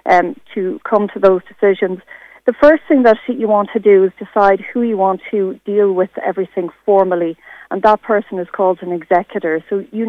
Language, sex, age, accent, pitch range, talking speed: English, female, 40-59, Irish, 185-210 Hz, 195 wpm